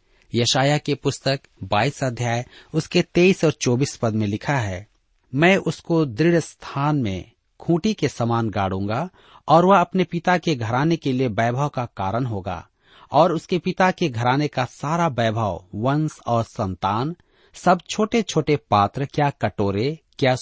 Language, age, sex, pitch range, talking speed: Hindi, 40-59, male, 105-155 Hz, 155 wpm